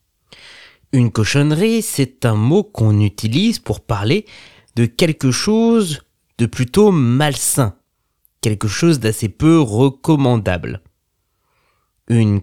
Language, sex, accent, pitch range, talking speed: French, male, French, 105-145 Hz, 100 wpm